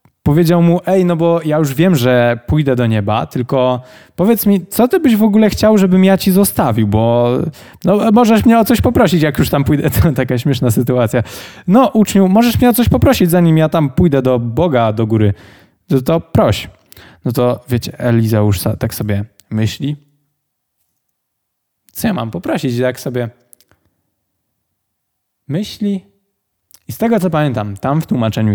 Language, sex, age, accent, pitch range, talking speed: Polish, male, 20-39, native, 105-145 Hz, 170 wpm